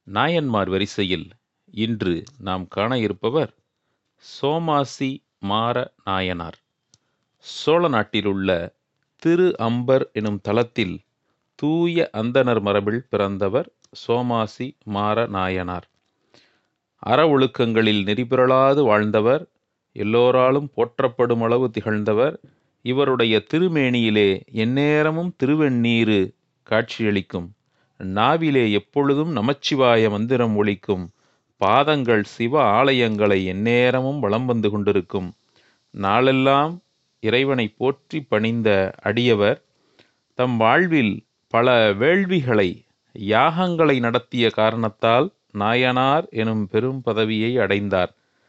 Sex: male